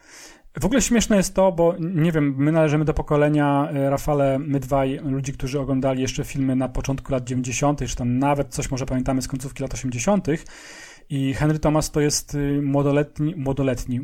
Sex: male